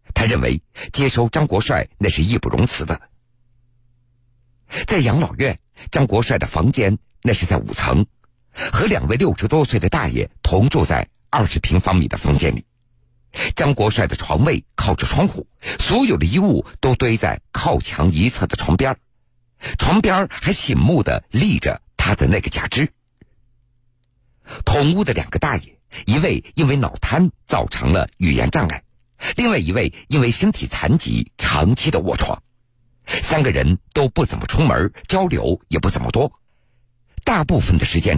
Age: 50-69